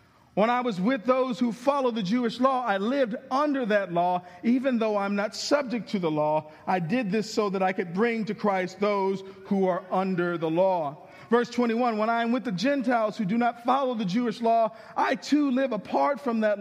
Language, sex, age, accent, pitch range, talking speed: English, male, 40-59, American, 195-250 Hz, 215 wpm